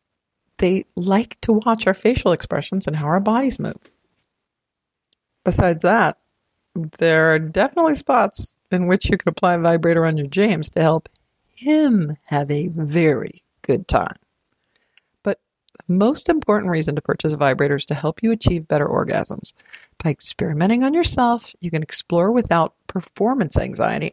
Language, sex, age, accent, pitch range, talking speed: English, female, 50-69, American, 160-205 Hz, 155 wpm